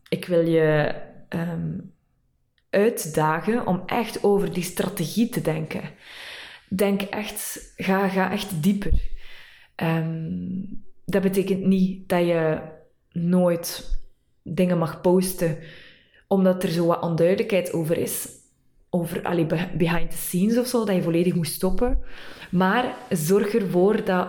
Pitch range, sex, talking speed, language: 170-200 Hz, female, 120 wpm, Dutch